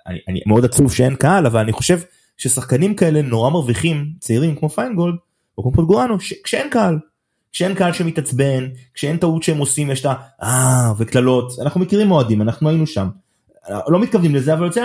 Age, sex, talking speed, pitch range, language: 30-49, male, 180 wpm, 105-160 Hz, Hebrew